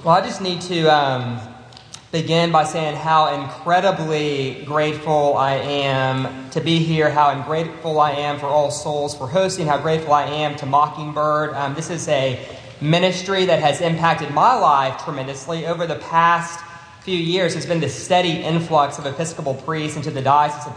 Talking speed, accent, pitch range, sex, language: 175 wpm, American, 140-160 Hz, male, English